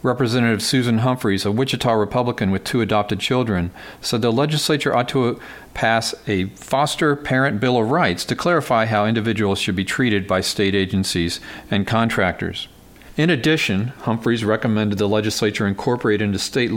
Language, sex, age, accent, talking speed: English, male, 40-59, American, 155 wpm